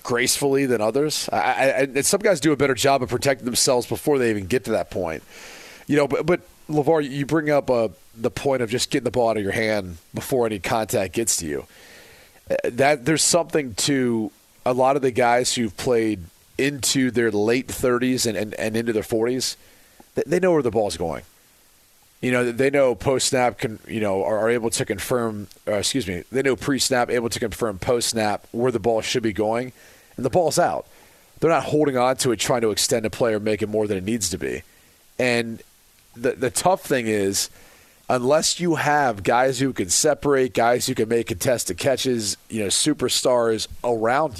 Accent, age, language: American, 30-49, English